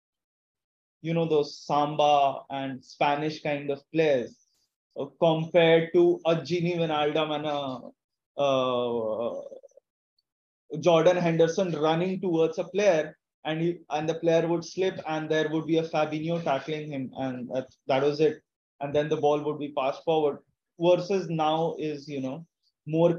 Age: 20-39